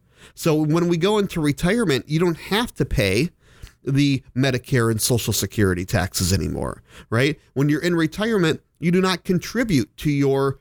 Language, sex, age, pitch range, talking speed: English, male, 40-59, 120-170 Hz, 165 wpm